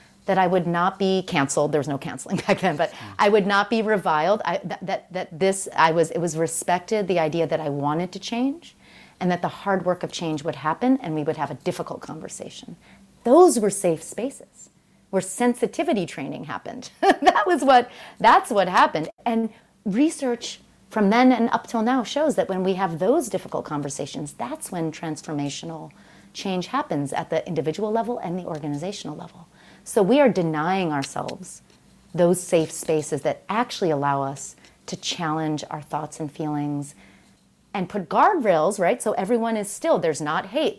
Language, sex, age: English, female, 30-49